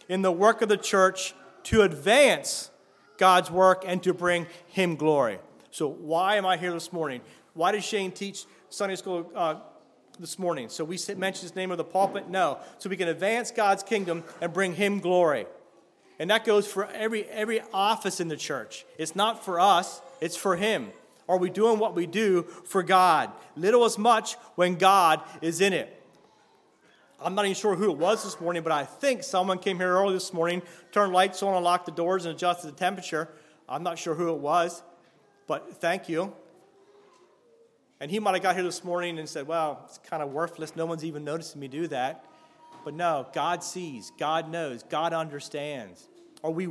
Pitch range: 170-205 Hz